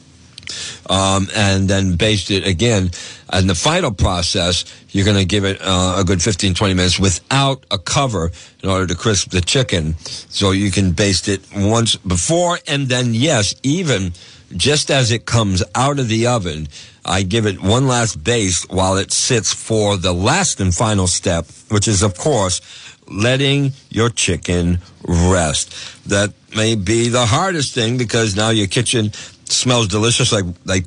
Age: 60-79